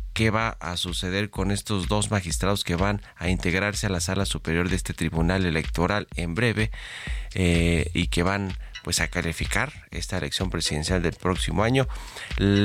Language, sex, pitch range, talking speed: Spanish, male, 85-105 Hz, 170 wpm